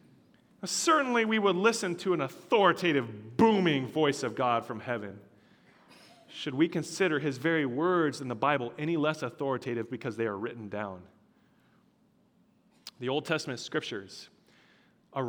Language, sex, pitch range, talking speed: English, male, 135-185 Hz, 135 wpm